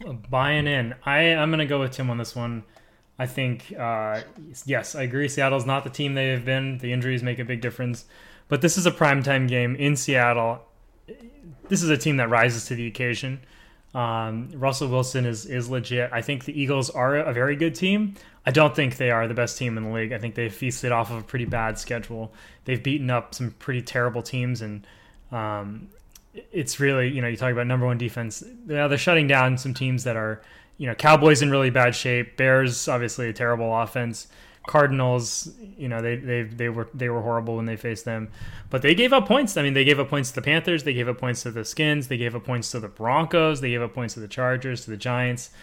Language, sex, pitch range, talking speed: English, male, 120-150 Hz, 230 wpm